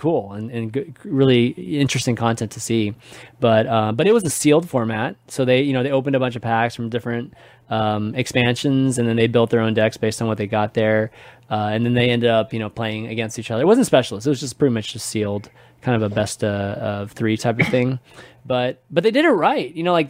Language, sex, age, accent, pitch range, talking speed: English, male, 20-39, American, 115-140 Hz, 255 wpm